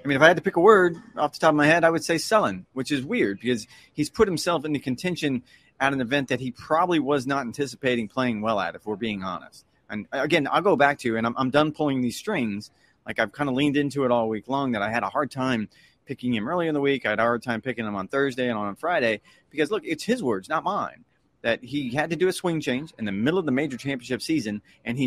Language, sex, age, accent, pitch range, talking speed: English, male, 30-49, American, 120-150 Hz, 280 wpm